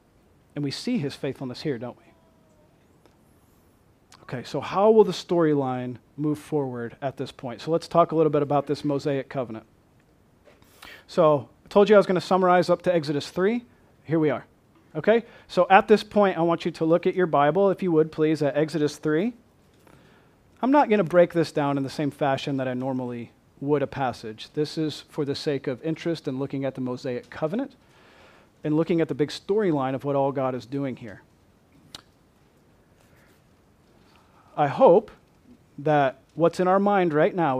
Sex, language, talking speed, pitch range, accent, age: male, English, 185 wpm, 140-175 Hz, American, 40-59